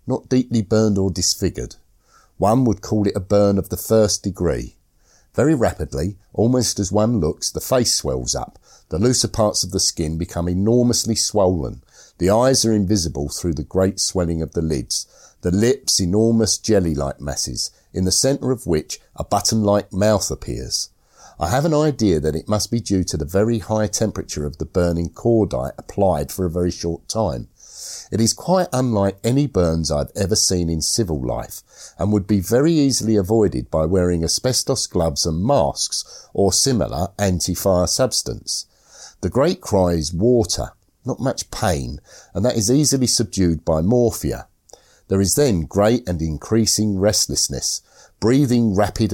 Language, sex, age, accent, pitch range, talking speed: English, male, 50-69, British, 85-110 Hz, 165 wpm